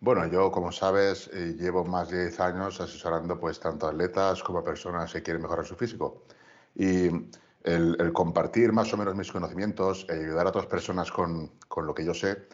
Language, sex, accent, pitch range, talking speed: Spanish, male, Spanish, 85-100 Hz, 185 wpm